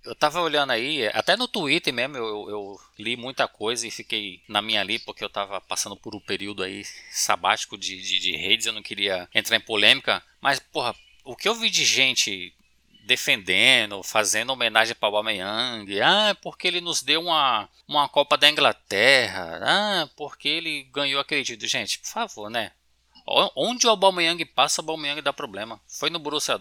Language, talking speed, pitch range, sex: Portuguese, 190 wpm, 110-170 Hz, male